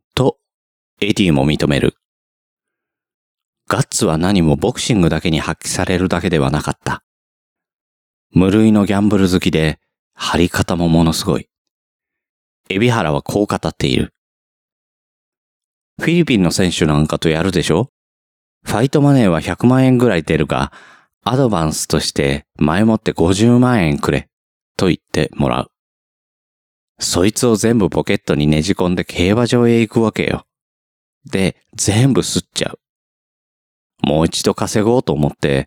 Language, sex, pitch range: Japanese, male, 75-110 Hz